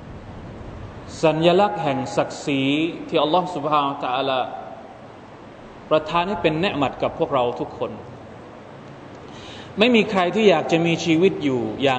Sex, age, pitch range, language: male, 20-39, 125-185 Hz, Thai